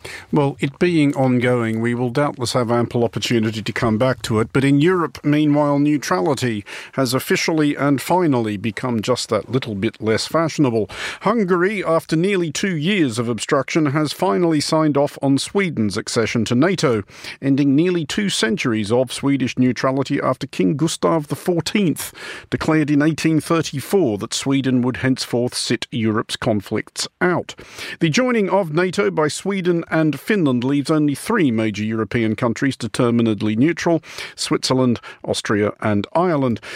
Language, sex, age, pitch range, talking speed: English, male, 50-69, 120-160 Hz, 145 wpm